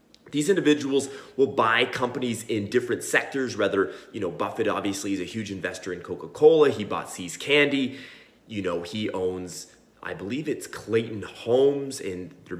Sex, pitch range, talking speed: male, 95-135 Hz, 160 wpm